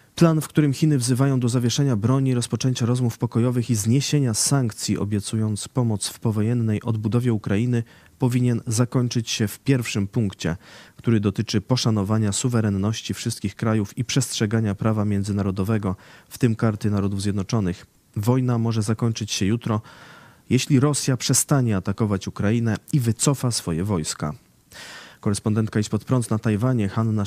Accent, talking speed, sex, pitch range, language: native, 135 wpm, male, 105-125 Hz, Polish